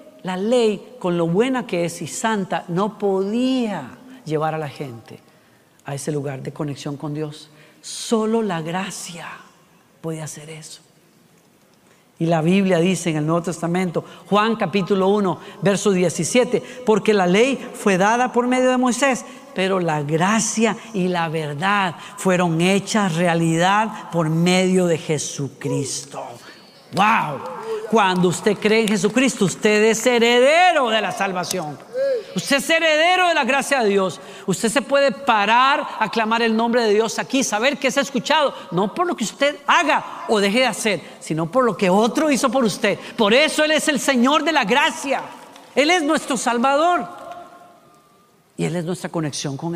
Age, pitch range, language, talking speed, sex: 40-59, 175-250 Hz, Spanish, 165 wpm, female